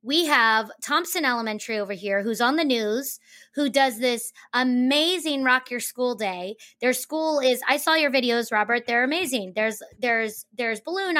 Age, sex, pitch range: 30-49, female, 245-315 Hz